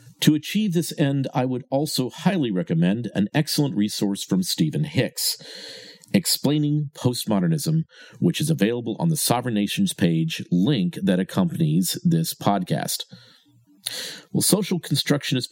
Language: English